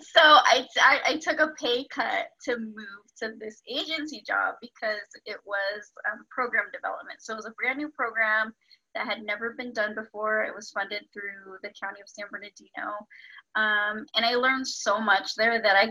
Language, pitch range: English, 210-260 Hz